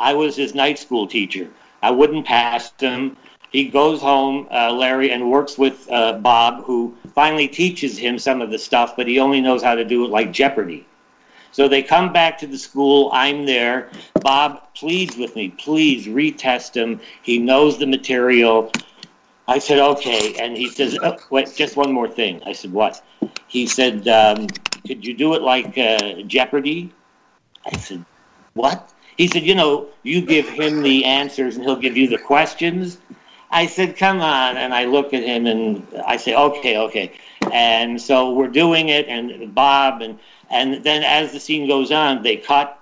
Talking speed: 180 wpm